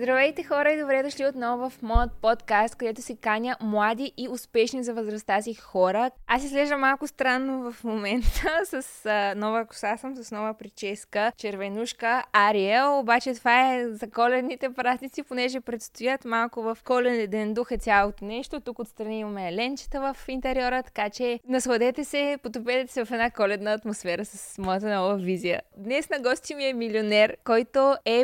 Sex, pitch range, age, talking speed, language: female, 215-260 Hz, 20-39, 170 wpm, Bulgarian